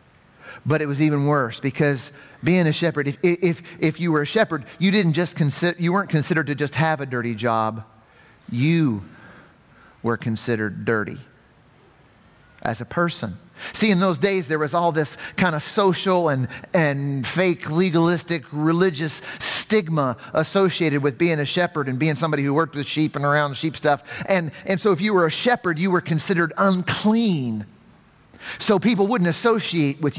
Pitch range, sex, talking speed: 145-195 Hz, male, 175 wpm